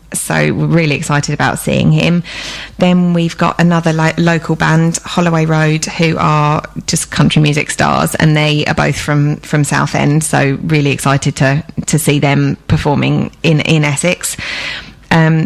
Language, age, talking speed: English, 20-39, 160 wpm